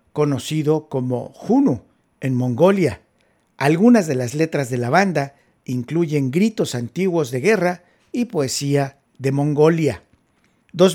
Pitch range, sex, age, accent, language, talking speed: 130-170 Hz, male, 50-69, Mexican, Spanish, 120 wpm